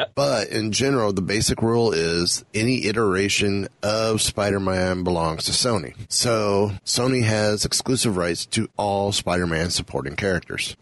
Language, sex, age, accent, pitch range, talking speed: English, male, 30-49, American, 90-110 Hz, 135 wpm